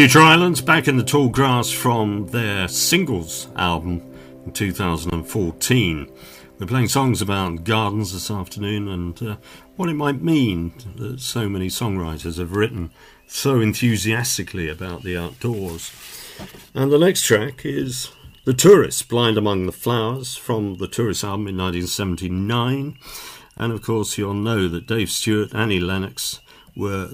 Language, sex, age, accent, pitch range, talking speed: English, male, 50-69, British, 90-120 Hz, 145 wpm